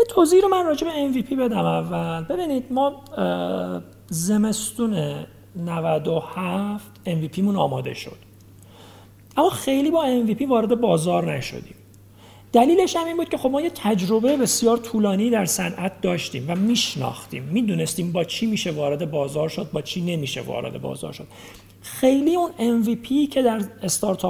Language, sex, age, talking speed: Persian, male, 40-59, 140 wpm